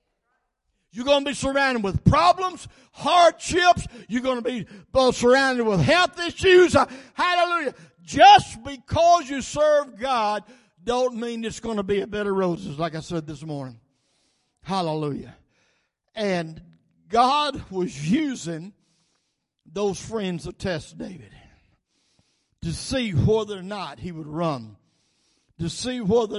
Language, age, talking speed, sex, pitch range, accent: English, 60-79, 135 wpm, male, 175-255 Hz, American